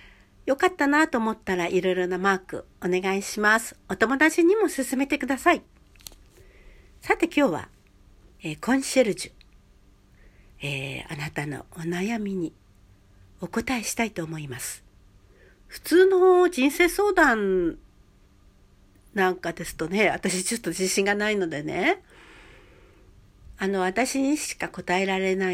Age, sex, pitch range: 60-79, female, 155-230 Hz